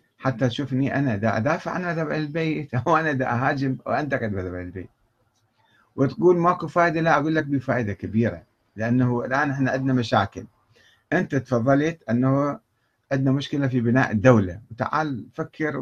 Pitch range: 110-135 Hz